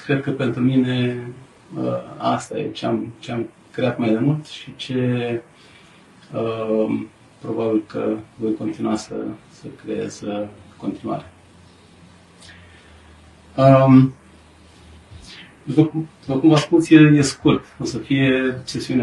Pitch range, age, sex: 105-130 Hz, 40-59, male